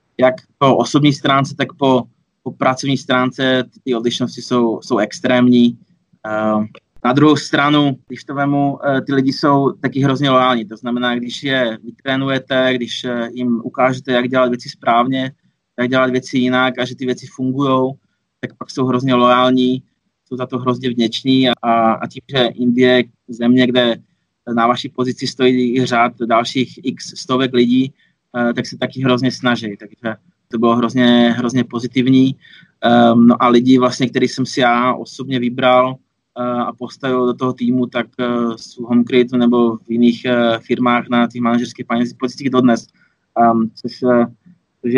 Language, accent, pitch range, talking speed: Czech, native, 120-130 Hz, 160 wpm